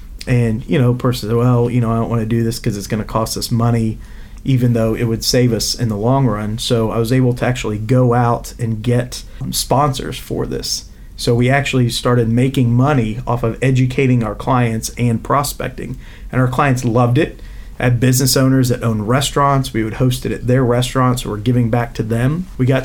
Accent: American